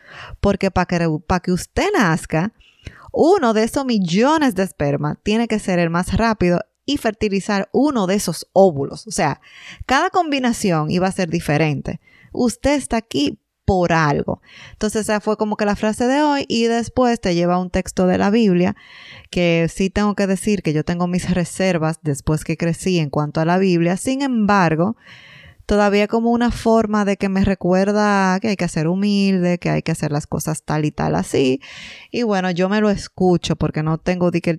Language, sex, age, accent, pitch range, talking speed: Spanish, female, 20-39, American, 175-215 Hz, 190 wpm